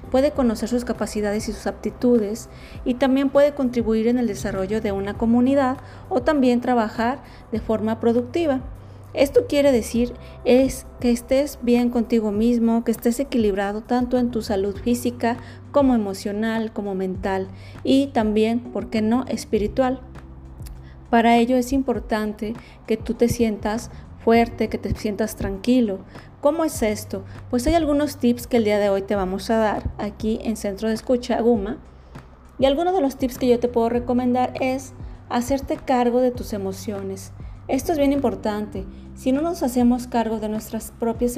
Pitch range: 215-250 Hz